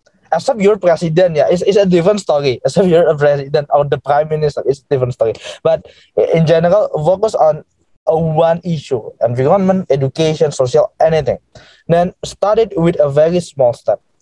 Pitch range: 135-175 Hz